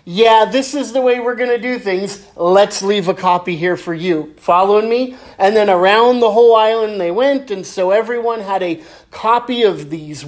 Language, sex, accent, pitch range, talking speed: English, male, American, 180-230 Hz, 205 wpm